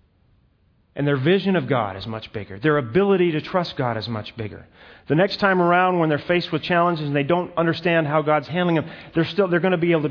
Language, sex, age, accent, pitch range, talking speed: English, male, 40-59, American, 120-165 Hz, 245 wpm